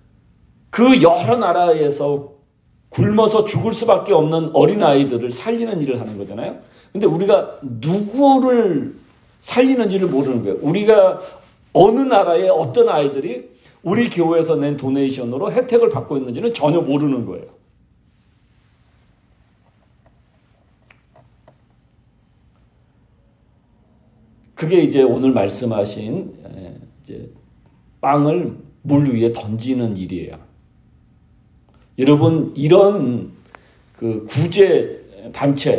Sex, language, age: male, Korean, 40-59